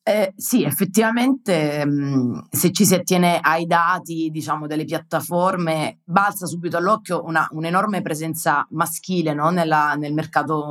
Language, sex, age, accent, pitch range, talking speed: Italian, female, 30-49, native, 170-215 Hz, 135 wpm